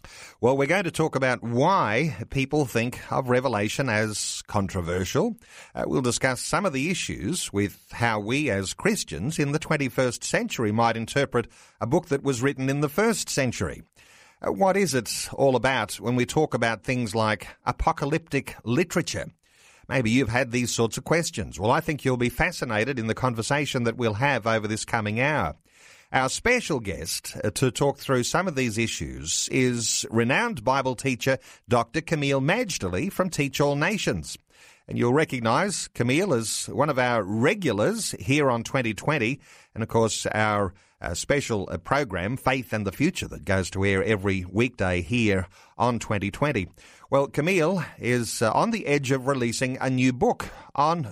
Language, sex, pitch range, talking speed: English, male, 110-140 Hz, 165 wpm